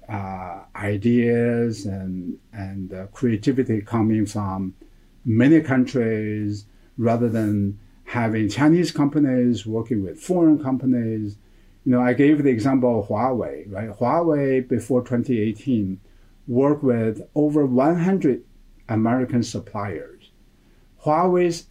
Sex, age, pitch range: male, 50-69, 105-130 Hz